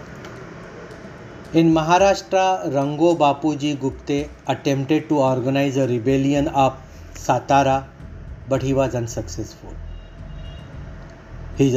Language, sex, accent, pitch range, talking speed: Hindi, male, native, 125-145 Hz, 85 wpm